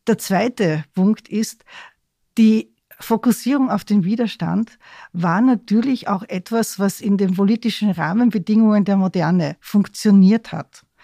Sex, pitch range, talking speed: female, 185-215 Hz, 120 wpm